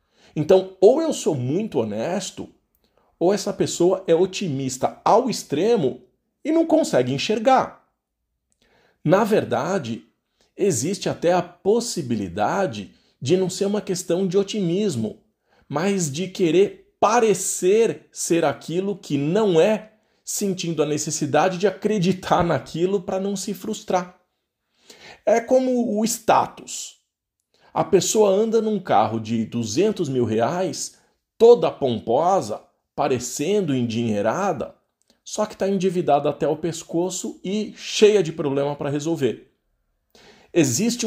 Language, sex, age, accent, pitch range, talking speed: Portuguese, male, 50-69, Brazilian, 150-205 Hz, 115 wpm